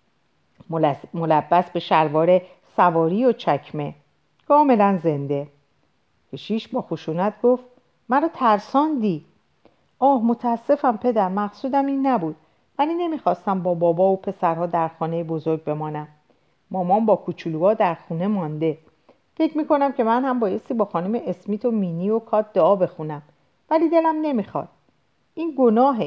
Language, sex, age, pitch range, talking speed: Persian, female, 40-59, 160-245 Hz, 130 wpm